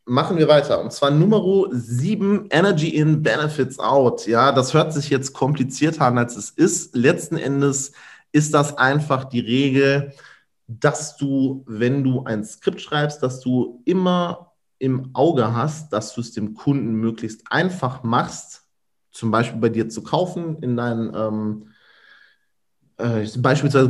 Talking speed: 150 wpm